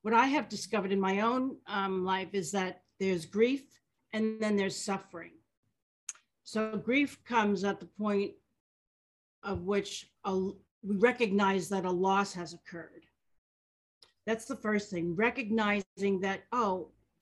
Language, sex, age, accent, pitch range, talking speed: English, female, 50-69, American, 185-220 Hz, 135 wpm